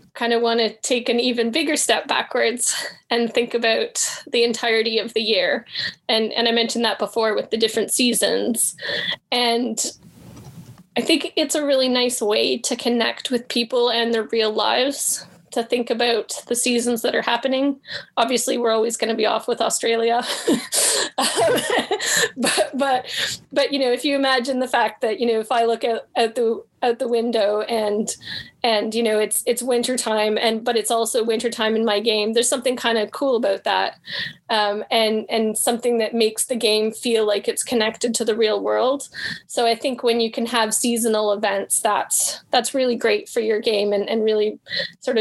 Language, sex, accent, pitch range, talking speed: English, female, American, 220-250 Hz, 190 wpm